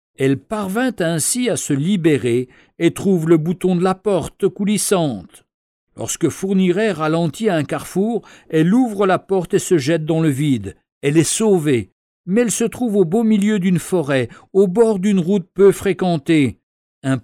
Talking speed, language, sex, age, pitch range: 165 wpm, French, male, 60-79, 140-195 Hz